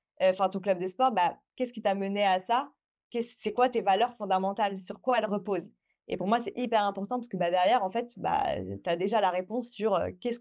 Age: 20-39